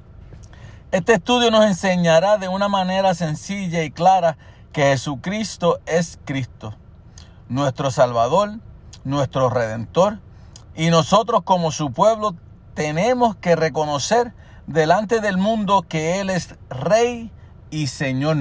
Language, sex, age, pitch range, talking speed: Spanish, male, 50-69, 115-185 Hz, 115 wpm